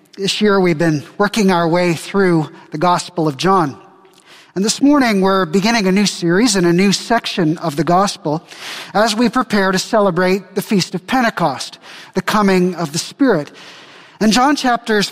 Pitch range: 175-220 Hz